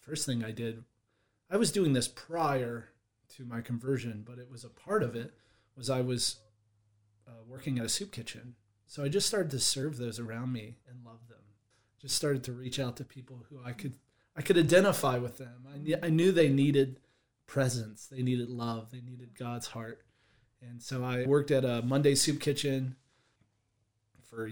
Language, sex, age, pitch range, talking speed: English, male, 30-49, 115-135 Hz, 190 wpm